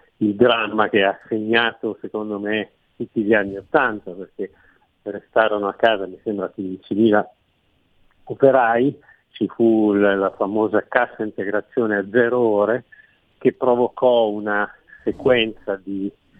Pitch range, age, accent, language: 105-125 Hz, 50-69, native, Italian